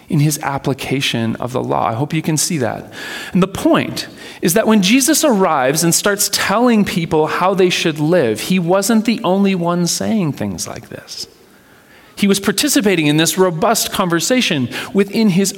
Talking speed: 175 wpm